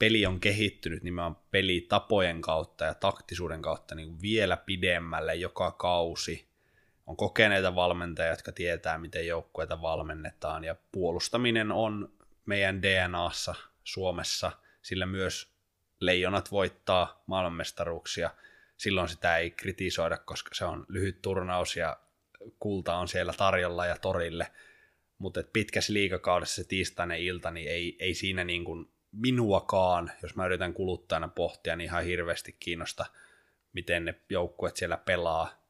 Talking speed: 125 wpm